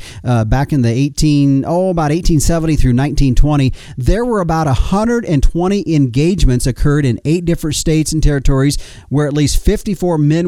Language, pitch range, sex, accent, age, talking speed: English, 130-160 Hz, male, American, 40-59, 155 wpm